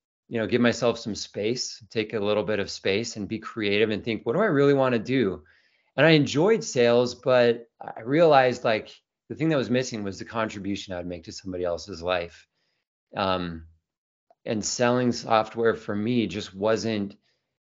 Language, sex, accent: English, male, American